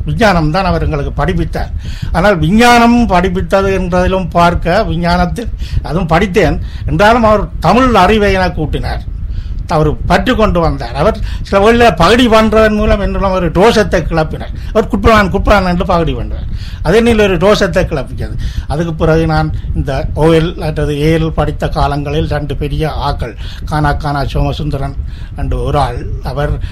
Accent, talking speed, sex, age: native, 130 wpm, male, 50-69